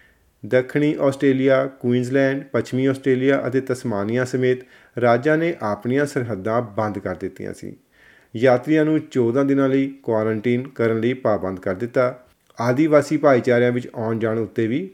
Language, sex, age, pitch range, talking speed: Punjabi, male, 40-59, 115-140 Hz, 135 wpm